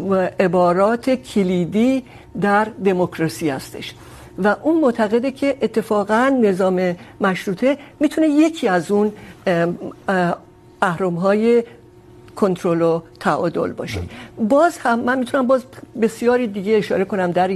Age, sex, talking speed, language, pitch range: 60-79, female, 115 wpm, Urdu, 180-235 Hz